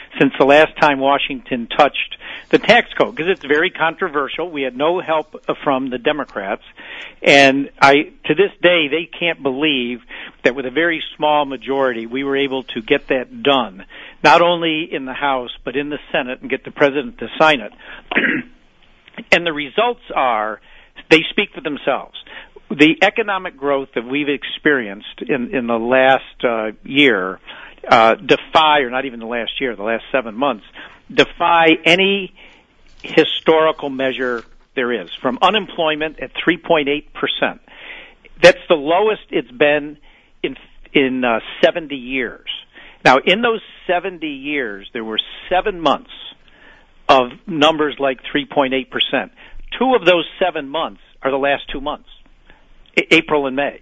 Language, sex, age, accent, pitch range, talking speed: English, male, 50-69, American, 135-170 Hz, 150 wpm